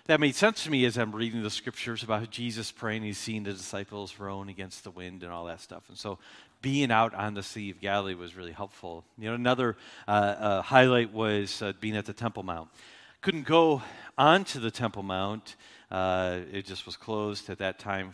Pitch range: 95-120 Hz